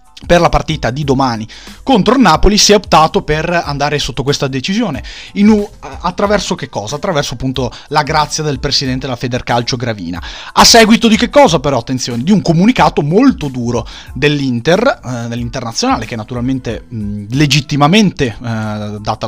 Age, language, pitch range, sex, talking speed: 30-49, Italian, 120-165 Hz, male, 155 wpm